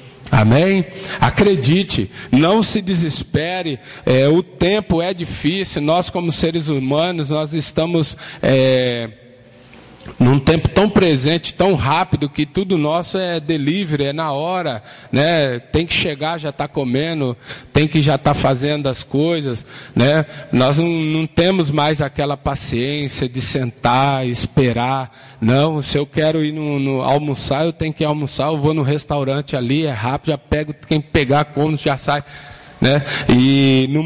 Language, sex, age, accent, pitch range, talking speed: Portuguese, male, 20-39, Brazilian, 130-160 Hz, 150 wpm